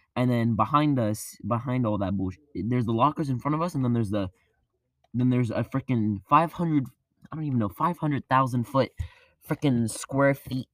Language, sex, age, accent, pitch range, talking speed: English, male, 10-29, American, 110-140 Hz, 185 wpm